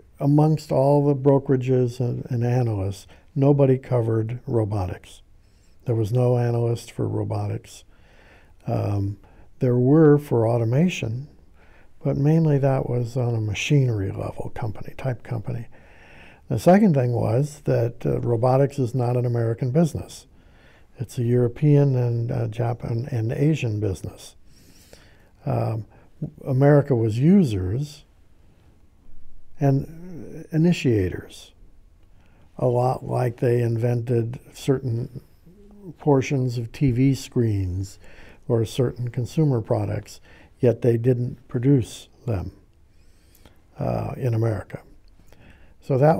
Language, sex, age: English, male, 60-79